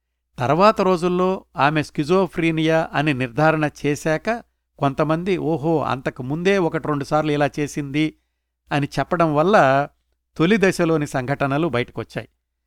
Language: Telugu